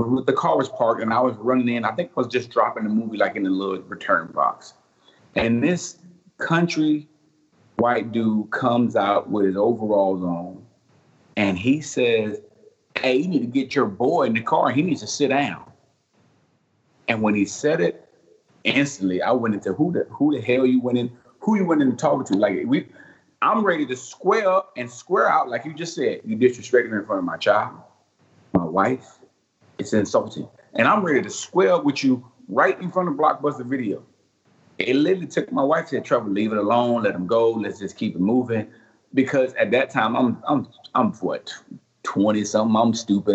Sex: male